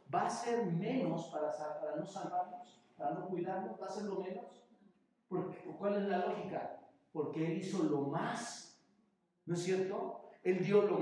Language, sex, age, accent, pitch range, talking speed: Spanish, male, 50-69, Mexican, 140-200 Hz, 170 wpm